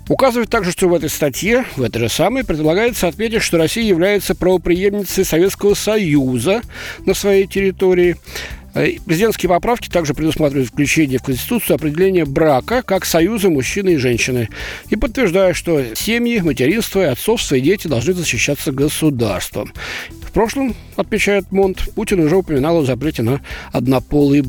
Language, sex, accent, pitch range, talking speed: Russian, male, native, 130-190 Hz, 140 wpm